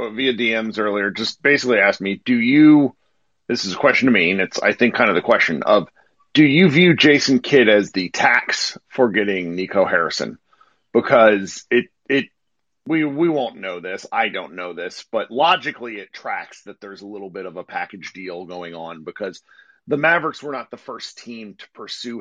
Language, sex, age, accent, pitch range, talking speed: English, male, 40-59, American, 100-130 Hz, 195 wpm